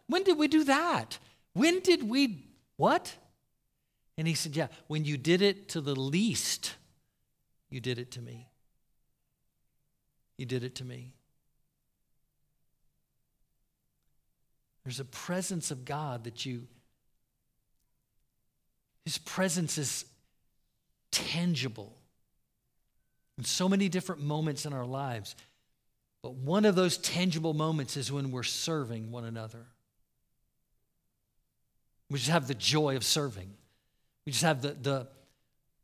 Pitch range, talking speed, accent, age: 125-165 Hz, 120 wpm, American, 50-69